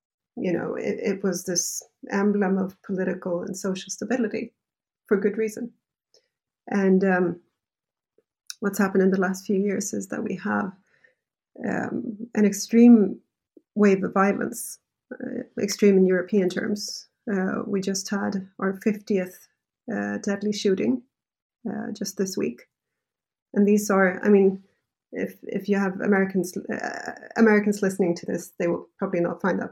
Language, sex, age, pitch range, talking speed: English, female, 30-49, 190-220 Hz, 145 wpm